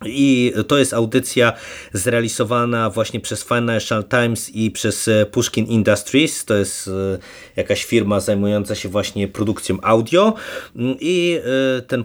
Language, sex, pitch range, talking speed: Polish, male, 110-130 Hz, 120 wpm